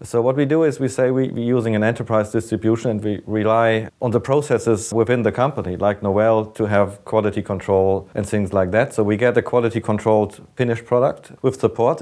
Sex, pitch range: male, 100-120 Hz